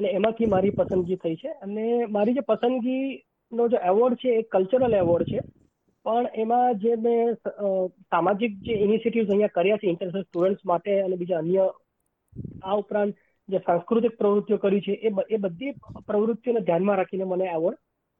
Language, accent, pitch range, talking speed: Gujarati, native, 185-225 Hz, 35 wpm